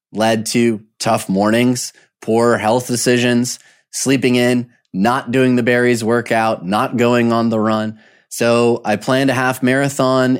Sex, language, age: male, English, 20-39